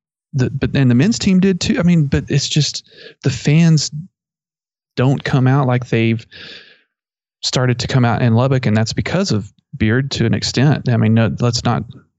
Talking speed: 190 wpm